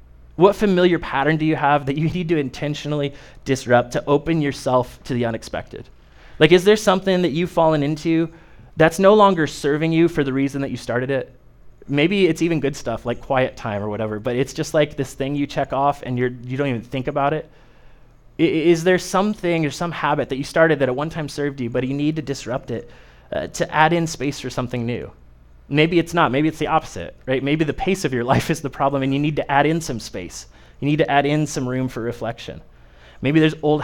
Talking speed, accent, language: 230 wpm, American, English